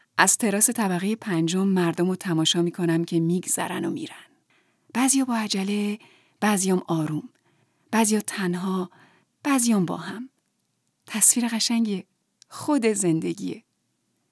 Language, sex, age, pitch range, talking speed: Persian, female, 30-49, 185-235 Hz, 110 wpm